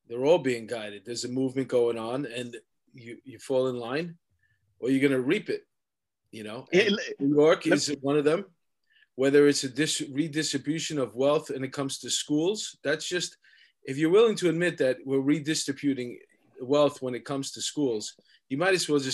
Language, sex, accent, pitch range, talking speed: English, male, American, 130-150 Hz, 190 wpm